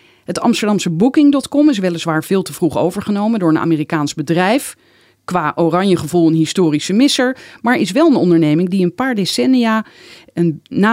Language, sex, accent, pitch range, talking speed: Dutch, female, Dutch, 160-225 Hz, 160 wpm